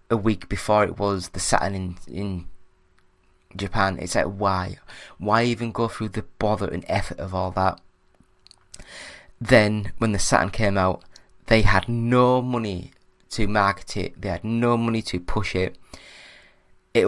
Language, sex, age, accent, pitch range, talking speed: English, male, 20-39, British, 95-115 Hz, 160 wpm